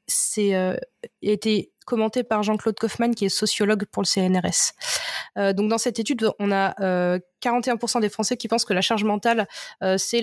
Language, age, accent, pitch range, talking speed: French, 20-39, French, 195-230 Hz, 190 wpm